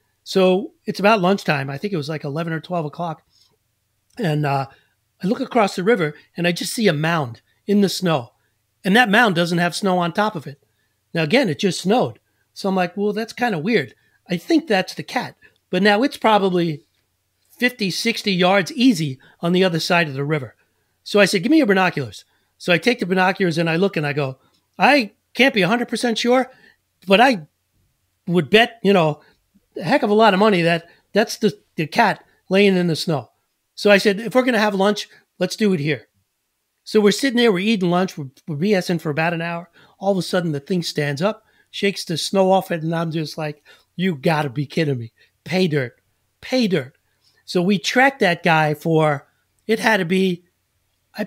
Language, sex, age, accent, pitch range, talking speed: English, male, 40-59, American, 150-210 Hz, 210 wpm